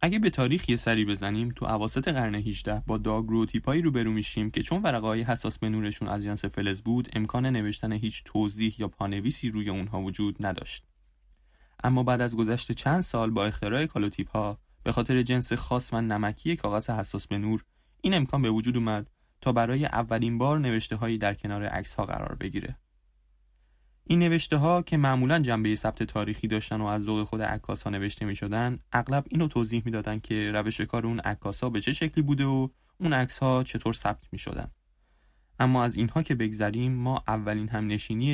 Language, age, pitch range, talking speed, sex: Persian, 20-39, 105-125 Hz, 185 wpm, male